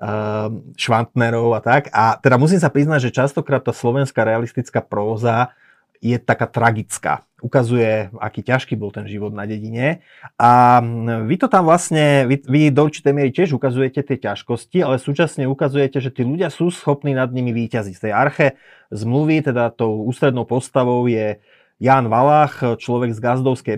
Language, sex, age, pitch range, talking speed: Slovak, male, 30-49, 115-130 Hz, 160 wpm